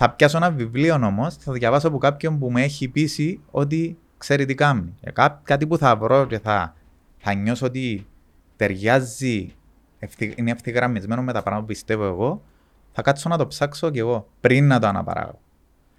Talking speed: 175 wpm